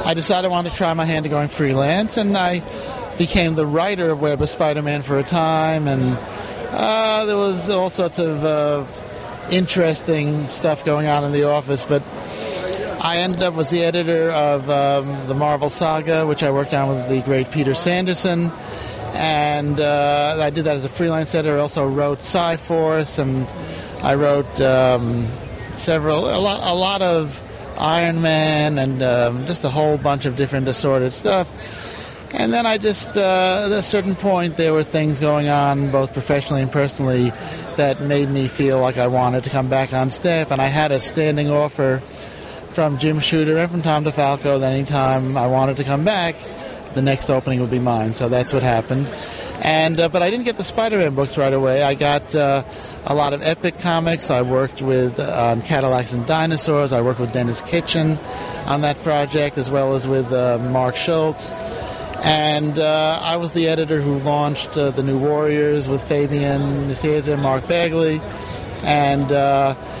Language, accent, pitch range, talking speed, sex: English, American, 135-160 Hz, 185 wpm, male